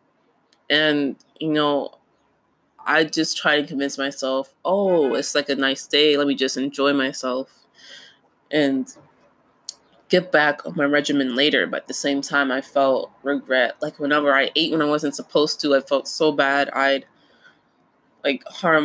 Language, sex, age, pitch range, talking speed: English, female, 20-39, 140-155 Hz, 160 wpm